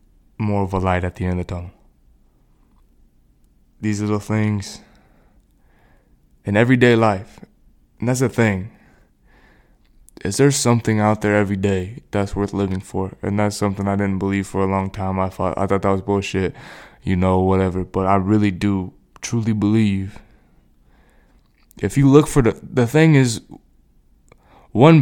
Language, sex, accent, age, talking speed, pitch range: English, male, American, 20-39, 160 wpm, 100-125 Hz